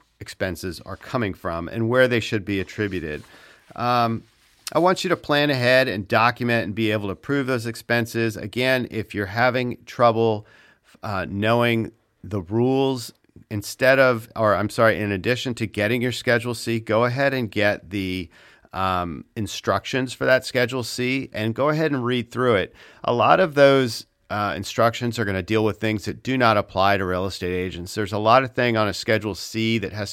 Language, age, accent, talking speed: English, 50-69, American, 190 wpm